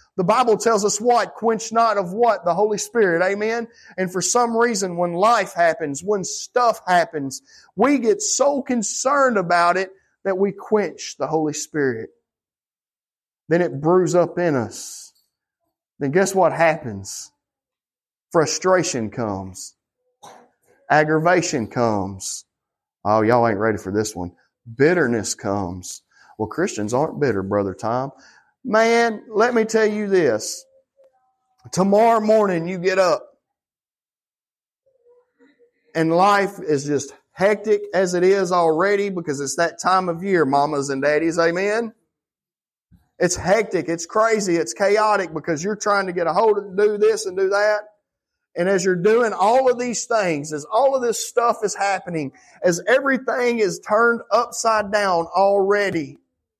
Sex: male